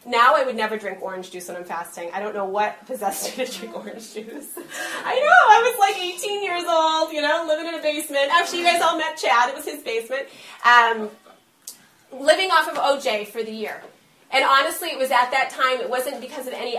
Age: 30-49